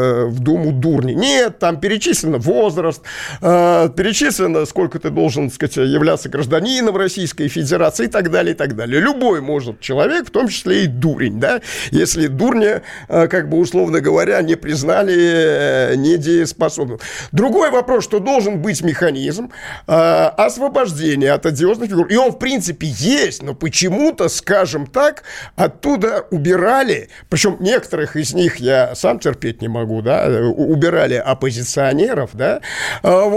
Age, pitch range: 50-69, 150-200 Hz